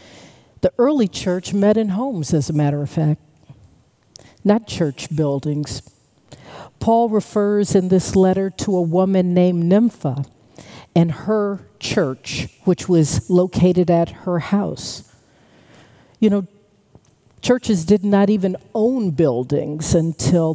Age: 50-69